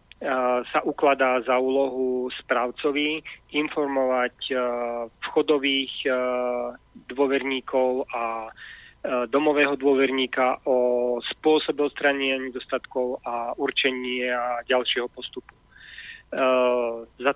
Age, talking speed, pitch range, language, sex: 30-49, 70 wpm, 125-140 Hz, Slovak, male